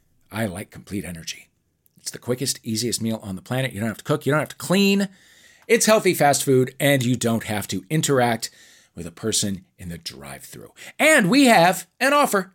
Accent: American